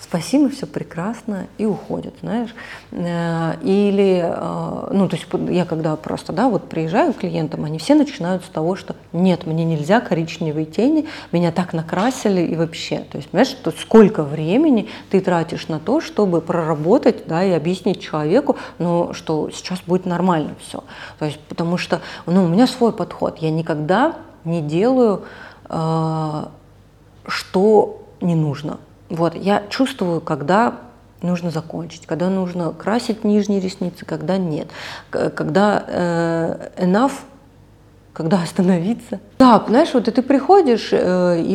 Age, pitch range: 30-49, 165-215 Hz